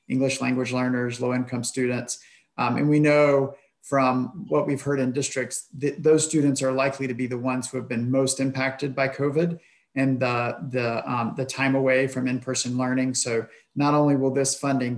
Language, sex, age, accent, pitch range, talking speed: English, male, 40-59, American, 125-135 Hz, 195 wpm